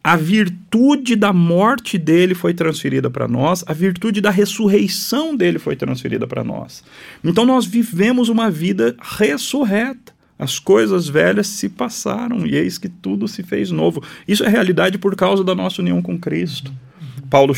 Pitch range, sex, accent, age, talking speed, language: 125-190 Hz, male, Brazilian, 40-59, 160 wpm, Portuguese